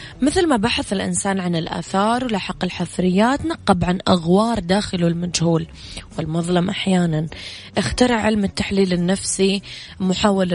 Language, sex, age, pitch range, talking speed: English, female, 20-39, 170-195 Hz, 115 wpm